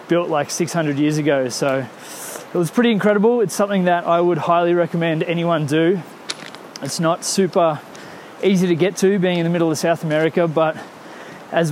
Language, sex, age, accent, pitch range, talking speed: English, male, 20-39, Australian, 155-180 Hz, 180 wpm